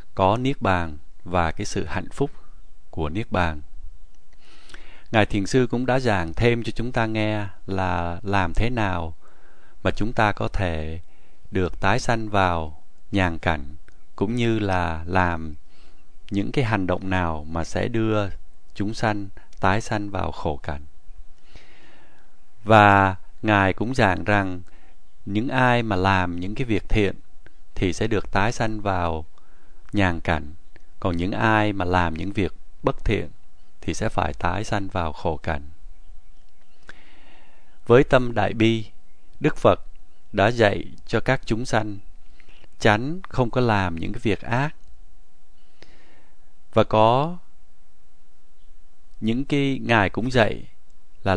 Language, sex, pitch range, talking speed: Vietnamese, male, 80-110 Hz, 145 wpm